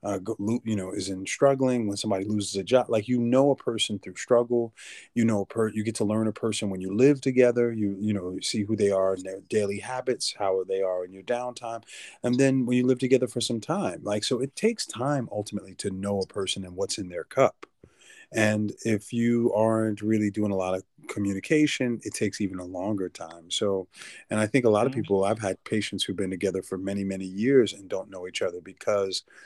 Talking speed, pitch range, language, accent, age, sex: 230 wpm, 95-115 Hz, English, American, 30-49, male